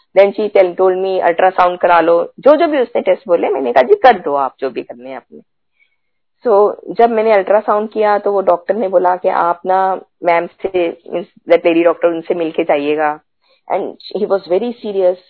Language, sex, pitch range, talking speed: Hindi, female, 175-230 Hz, 90 wpm